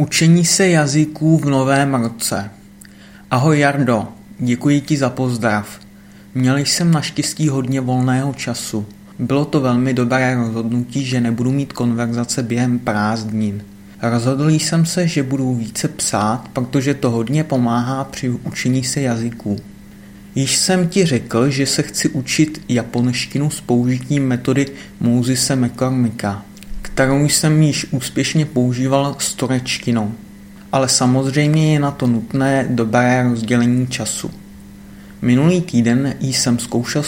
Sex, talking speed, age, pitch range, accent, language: male, 125 wpm, 30-49, 115-140 Hz, native, Czech